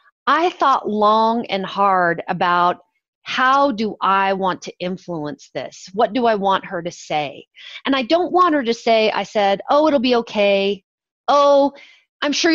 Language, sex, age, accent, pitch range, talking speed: English, female, 40-59, American, 200-260 Hz, 170 wpm